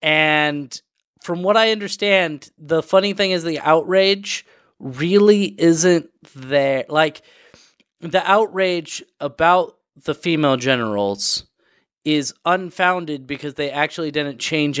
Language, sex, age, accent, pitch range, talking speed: English, male, 30-49, American, 145-185 Hz, 115 wpm